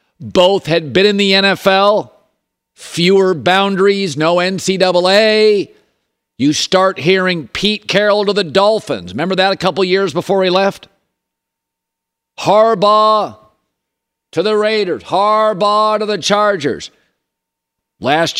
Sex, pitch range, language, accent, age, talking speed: male, 150-195 Hz, English, American, 50-69, 115 wpm